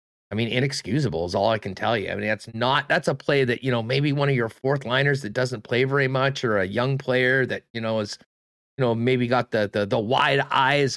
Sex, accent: male, American